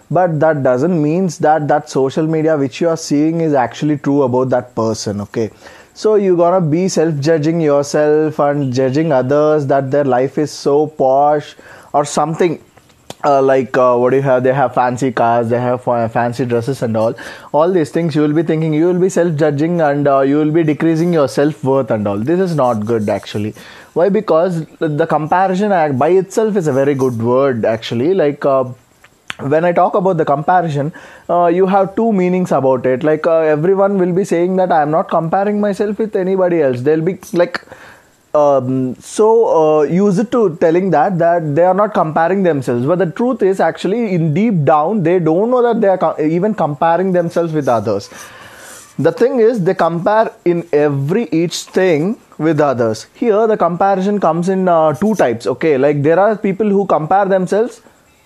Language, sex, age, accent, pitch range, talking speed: English, male, 20-39, Indian, 140-185 Hz, 190 wpm